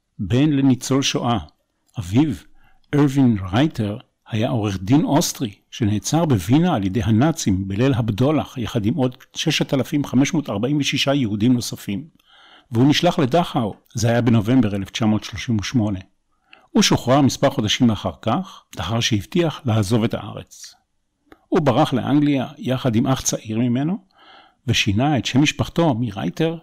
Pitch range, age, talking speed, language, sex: 105-140 Hz, 50-69, 125 wpm, Hebrew, male